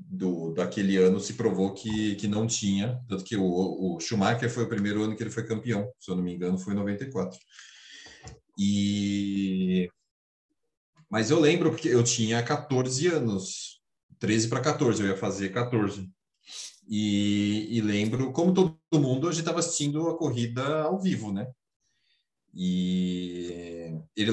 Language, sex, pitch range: Portuguese, male, 95-140 Hz